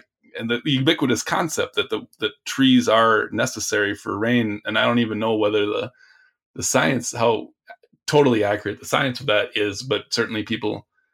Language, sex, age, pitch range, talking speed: English, male, 20-39, 105-125 Hz, 170 wpm